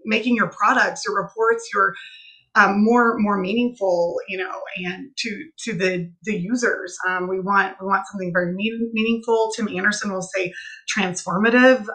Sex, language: female, English